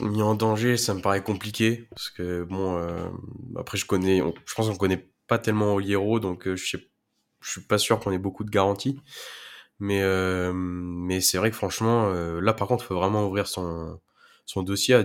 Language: French